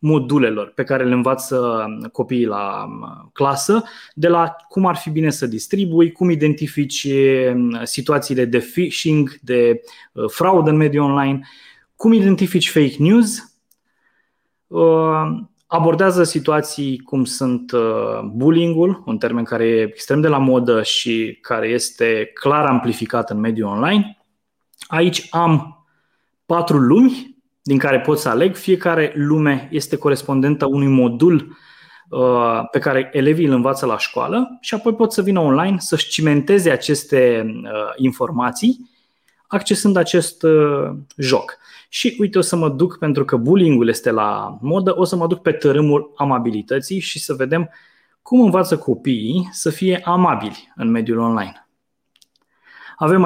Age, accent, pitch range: 20-39, native, 130-175 Hz